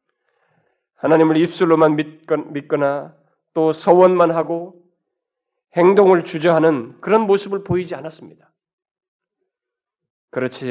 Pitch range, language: 130-180 Hz, Korean